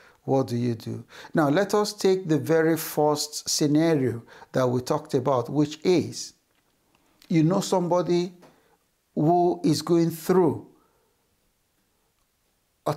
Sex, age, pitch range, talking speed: male, 60-79, 150-195 Hz, 120 wpm